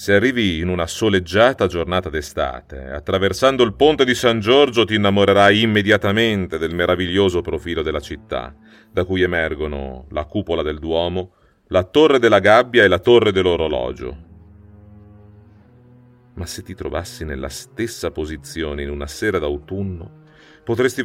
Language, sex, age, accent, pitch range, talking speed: Italian, male, 40-59, native, 90-115 Hz, 135 wpm